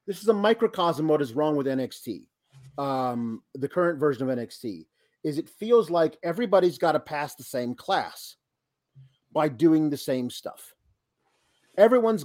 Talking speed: 155 wpm